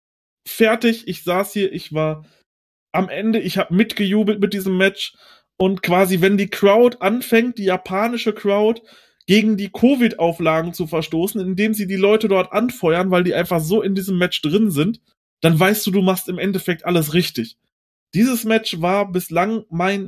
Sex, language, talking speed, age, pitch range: male, German, 170 wpm, 20-39, 160-200 Hz